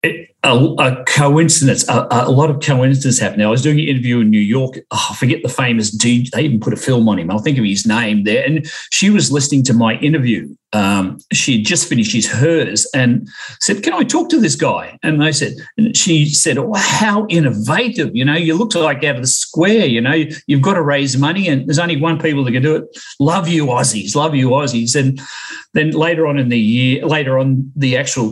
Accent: Australian